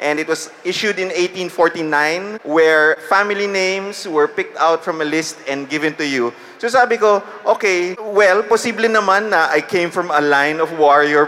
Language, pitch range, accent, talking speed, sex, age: English, 140-185 Hz, Filipino, 175 wpm, male, 20-39